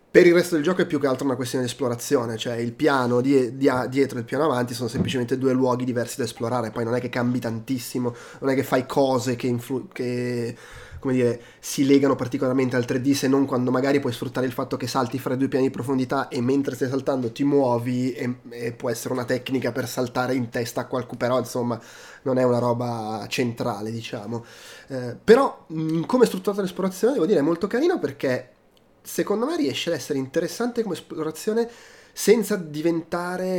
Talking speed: 205 wpm